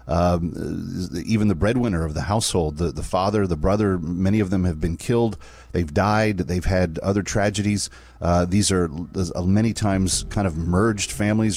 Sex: male